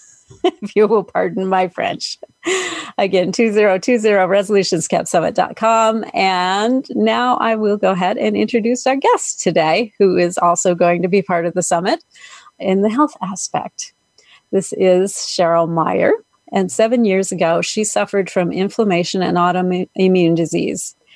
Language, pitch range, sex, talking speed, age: English, 180-215 Hz, female, 140 wpm, 40-59